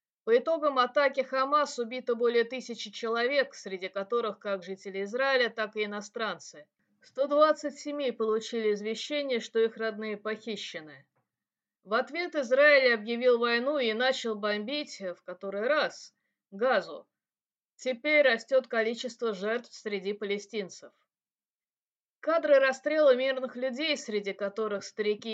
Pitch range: 205-260 Hz